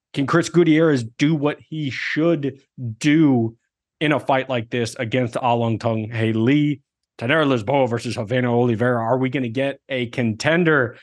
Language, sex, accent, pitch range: English, male, American, 115-140 Hz